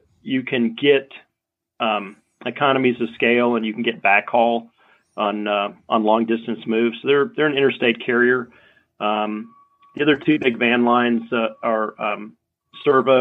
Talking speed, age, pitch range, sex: 160 wpm, 40-59, 110-120 Hz, male